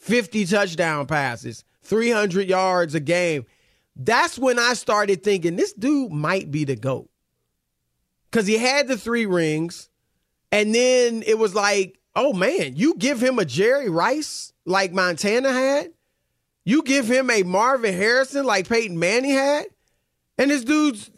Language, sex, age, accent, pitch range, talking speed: English, male, 30-49, American, 155-215 Hz, 150 wpm